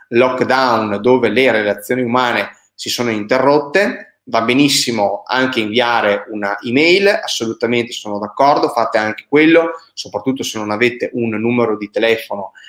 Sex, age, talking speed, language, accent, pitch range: male, 30-49, 130 wpm, Italian, native, 115-140 Hz